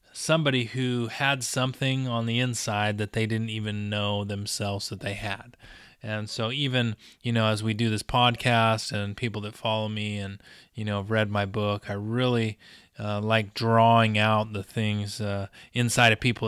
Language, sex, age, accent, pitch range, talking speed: English, male, 30-49, American, 105-120 Hz, 180 wpm